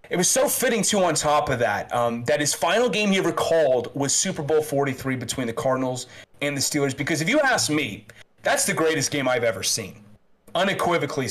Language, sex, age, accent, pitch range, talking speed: English, male, 30-49, American, 130-175 Hz, 210 wpm